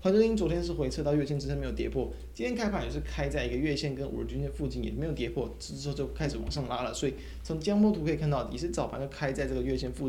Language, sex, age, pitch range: Chinese, male, 20-39, 125-170 Hz